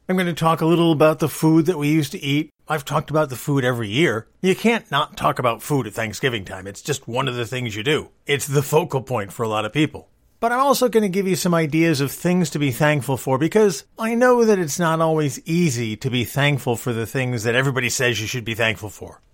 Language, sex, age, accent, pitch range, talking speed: English, male, 50-69, American, 130-170 Hz, 260 wpm